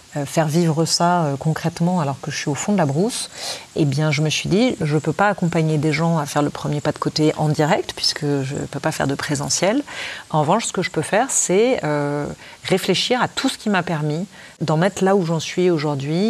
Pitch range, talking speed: 150-175 Hz, 245 wpm